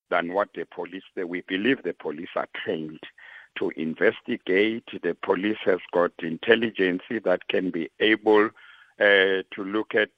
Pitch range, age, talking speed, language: 95-110 Hz, 60-79, 145 wpm, English